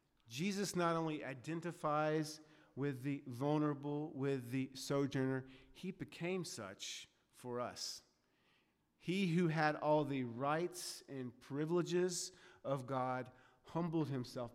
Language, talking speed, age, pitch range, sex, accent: English, 110 wpm, 40-59, 125-155 Hz, male, American